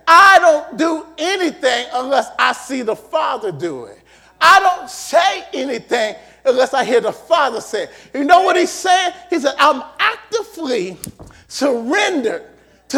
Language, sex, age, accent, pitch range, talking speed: English, male, 40-59, American, 295-380 Hz, 155 wpm